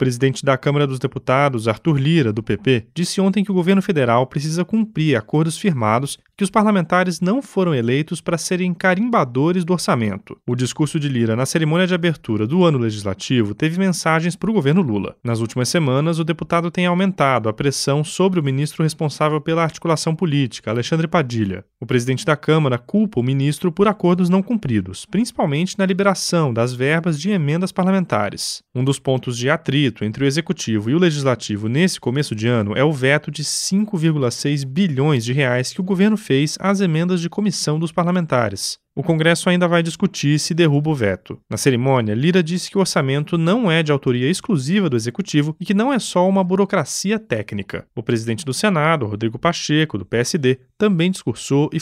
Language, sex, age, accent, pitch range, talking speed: Portuguese, male, 20-39, Brazilian, 135-185 Hz, 185 wpm